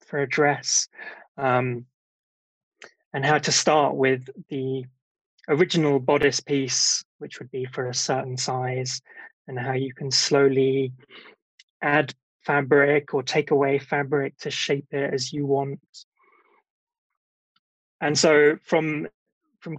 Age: 20-39